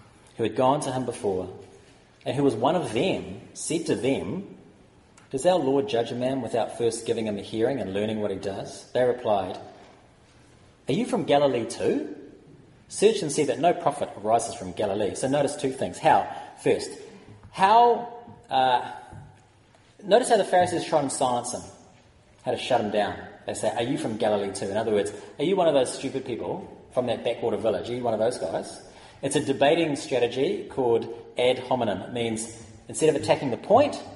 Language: English